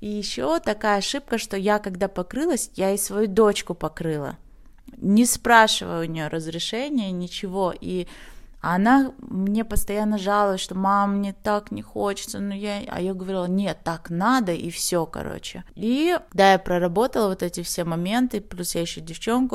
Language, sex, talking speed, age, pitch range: Russian, female, 155 wpm, 20-39, 175-220 Hz